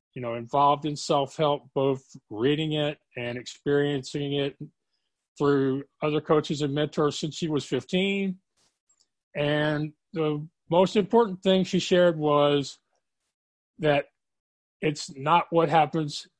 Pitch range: 135-170 Hz